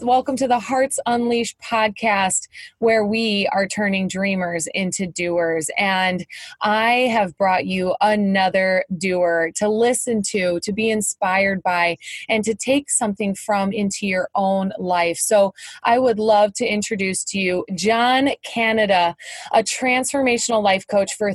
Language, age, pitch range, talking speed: English, 20-39, 185-225 Hz, 145 wpm